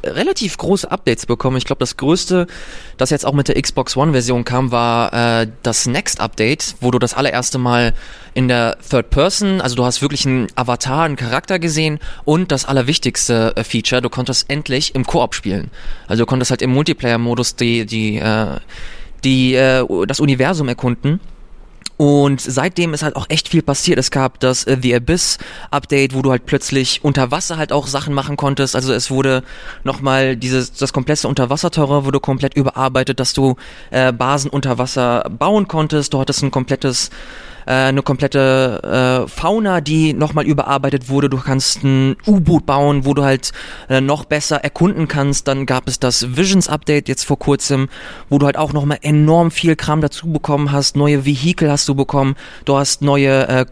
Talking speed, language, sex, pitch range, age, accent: 180 wpm, German, male, 130-155 Hz, 20-39, German